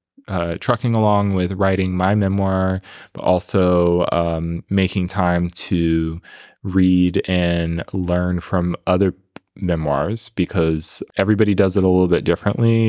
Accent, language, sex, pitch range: American, English, male, 85-100 Hz